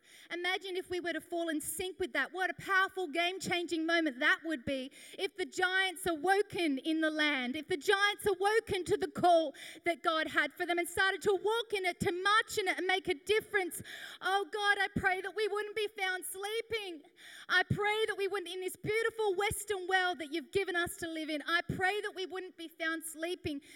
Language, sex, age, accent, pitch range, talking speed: English, female, 30-49, Australian, 290-390 Hz, 215 wpm